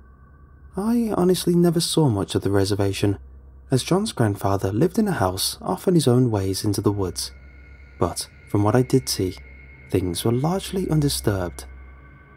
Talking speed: 160 wpm